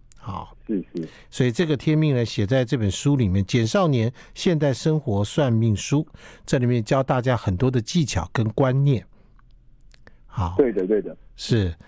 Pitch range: 115-155 Hz